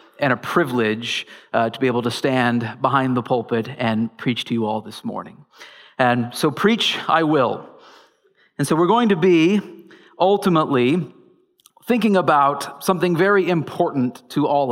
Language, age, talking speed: English, 40-59, 155 wpm